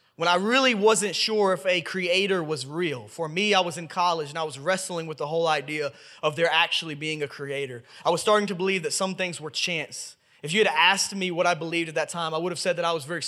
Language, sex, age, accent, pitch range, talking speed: English, male, 20-39, American, 150-195 Hz, 265 wpm